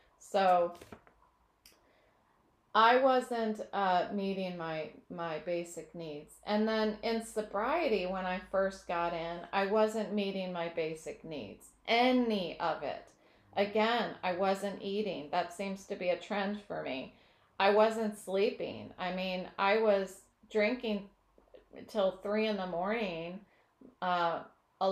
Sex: female